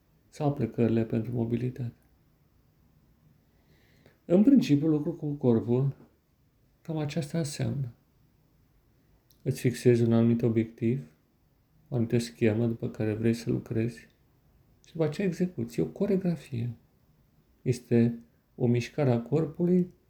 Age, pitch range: 40-59, 115-140 Hz